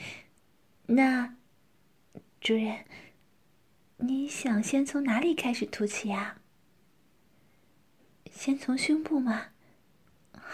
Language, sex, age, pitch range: Chinese, female, 20-39, 205-255 Hz